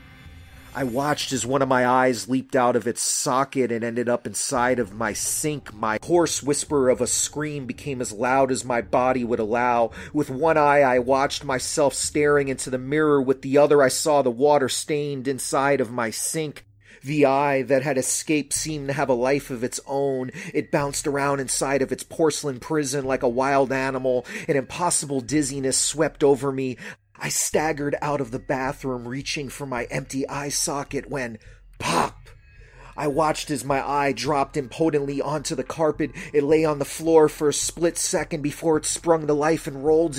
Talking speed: 190 wpm